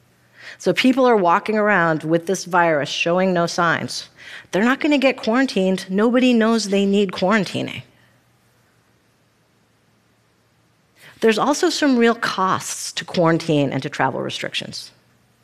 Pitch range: 155-200 Hz